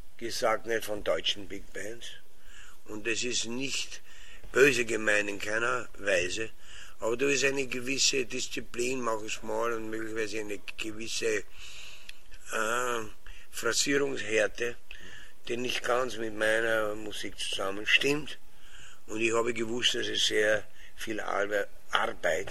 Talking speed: 125 wpm